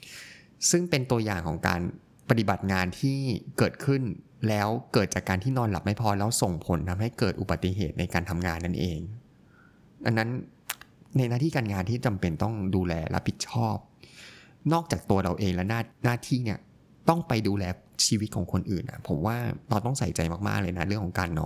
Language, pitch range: Thai, 90-125 Hz